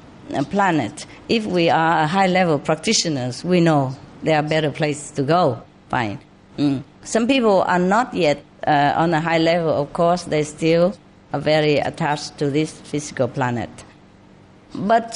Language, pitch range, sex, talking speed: English, 150-220 Hz, female, 160 wpm